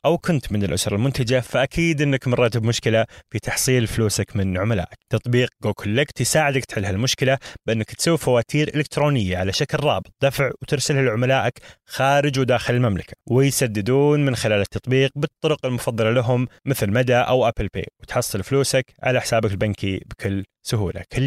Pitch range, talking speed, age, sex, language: 105-135 Hz, 150 wpm, 20-39, male, Arabic